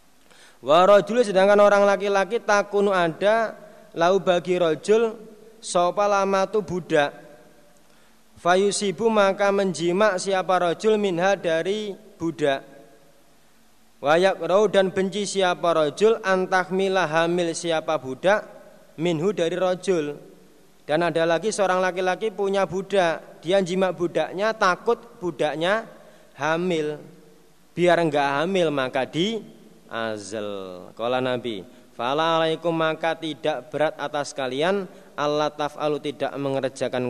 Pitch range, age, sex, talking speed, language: 145-190 Hz, 30-49, male, 105 wpm, Indonesian